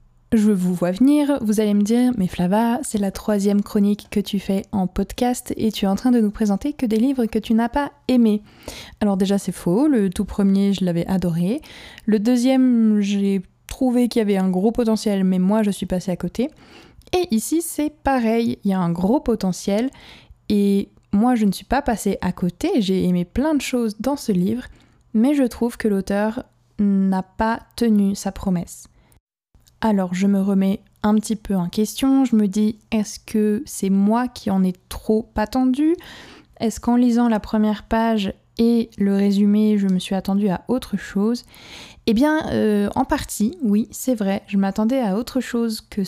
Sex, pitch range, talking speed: female, 195-240 Hz, 195 wpm